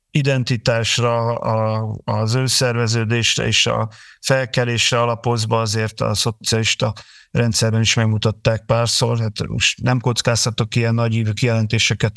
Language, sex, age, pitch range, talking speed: Hungarian, male, 50-69, 110-120 Hz, 100 wpm